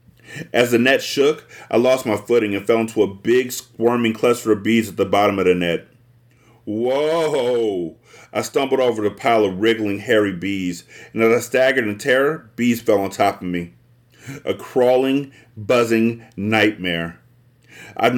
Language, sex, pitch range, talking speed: English, male, 110-130 Hz, 165 wpm